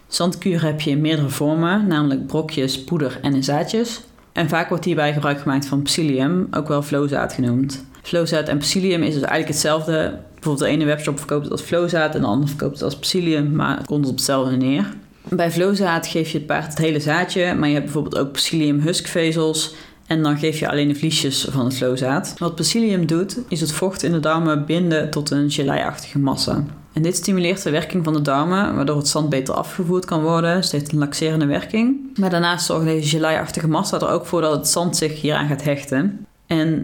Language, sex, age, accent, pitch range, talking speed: Dutch, female, 30-49, Dutch, 145-165 Hz, 210 wpm